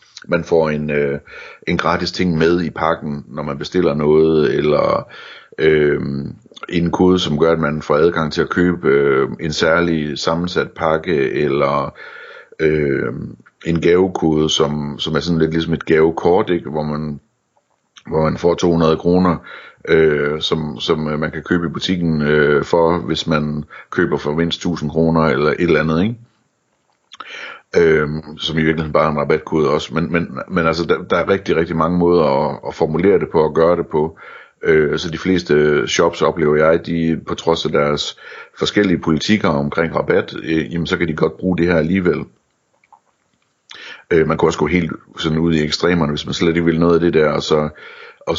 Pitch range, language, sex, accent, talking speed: 75-85 Hz, Danish, male, native, 185 wpm